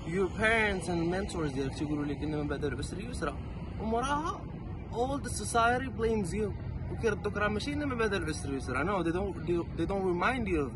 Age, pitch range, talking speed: 20-39, 105-175 Hz, 125 wpm